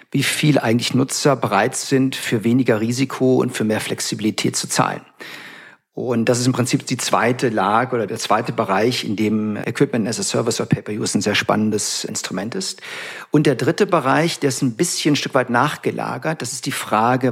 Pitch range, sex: 115-140 Hz, male